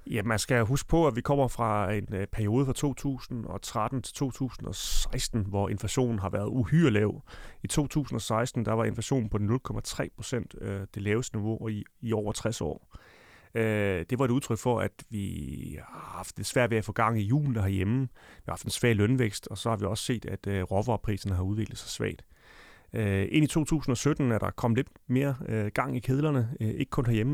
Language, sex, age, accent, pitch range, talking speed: Danish, male, 30-49, native, 105-125 Hz, 190 wpm